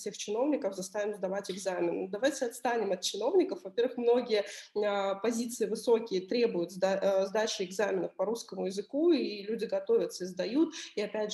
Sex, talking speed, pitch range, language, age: female, 150 wpm, 200-245 Hz, Russian, 20-39